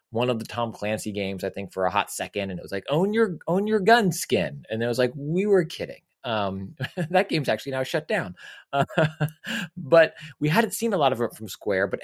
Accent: American